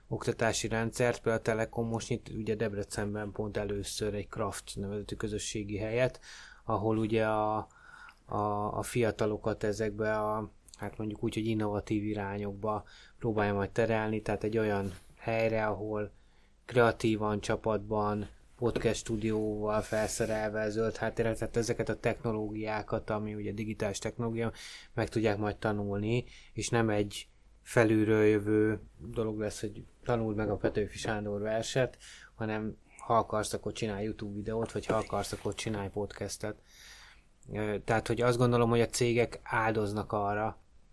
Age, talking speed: 20-39, 135 wpm